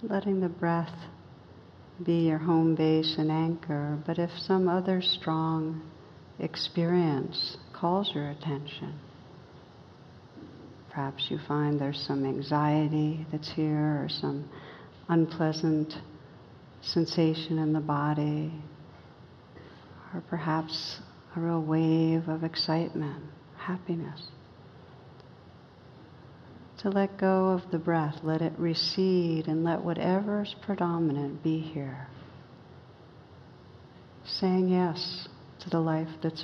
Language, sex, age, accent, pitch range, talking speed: English, female, 60-79, American, 150-170 Hz, 100 wpm